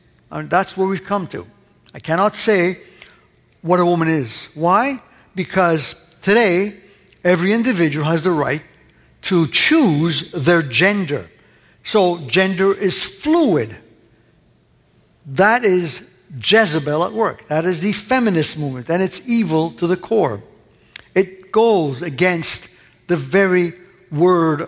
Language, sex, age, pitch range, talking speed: English, male, 60-79, 150-200 Hz, 120 wpm